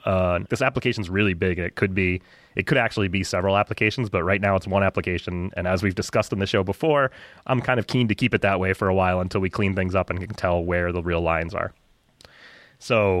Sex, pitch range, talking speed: male, 90-105 Hz, 250 wpm